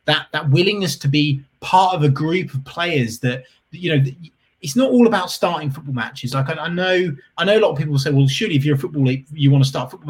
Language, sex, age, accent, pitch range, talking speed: English, male, 20-39, British, 135-185 Hz, 260 wpm